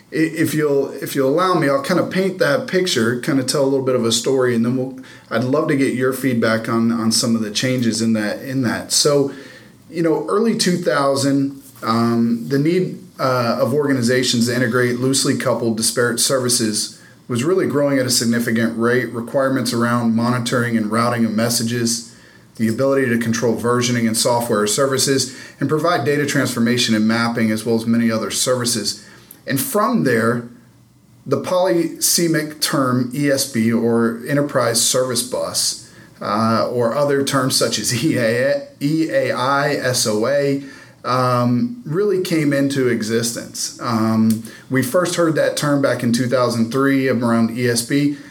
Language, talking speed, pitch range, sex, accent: English, 155 wpm, 115-145 Hz, male, American